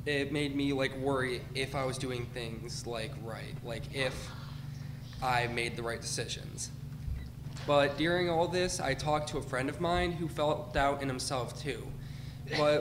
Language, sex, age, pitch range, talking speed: English, male, 20-39, 130-150 Hz, 175 wpm